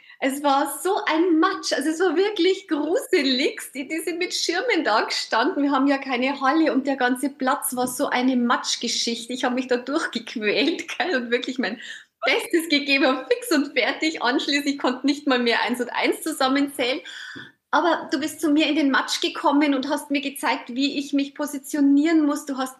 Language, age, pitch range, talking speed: German, 30-49, 230-300 Hz, 190 wpm